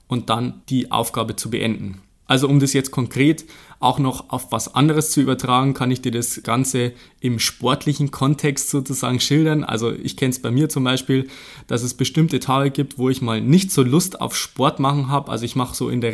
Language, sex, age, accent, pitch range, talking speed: German, male, 20-39, German, 125-145 Hz, 210 wpm